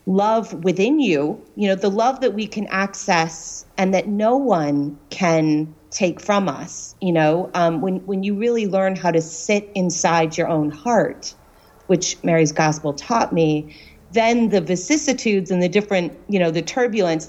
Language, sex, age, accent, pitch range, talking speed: English, female, 40-59, American, 160-195 Hz, 170 wpm